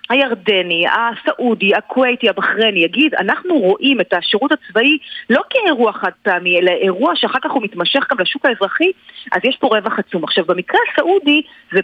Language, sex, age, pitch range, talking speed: Hebrew, female, 40-59, 205-285 Hz, 160 wpm